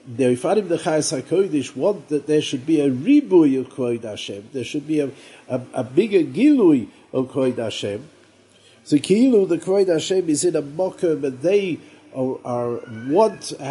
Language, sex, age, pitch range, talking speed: English, male, 50-69, 125-190 Hz, 170 wpm